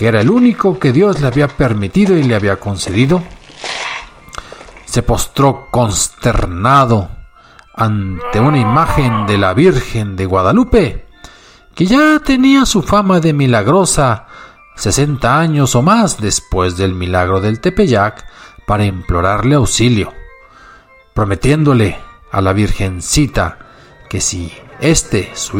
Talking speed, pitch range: 120 wpm, 105-155 Hz